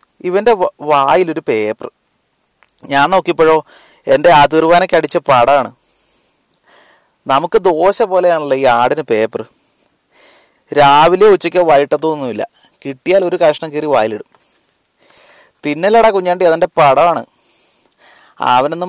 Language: Malayalam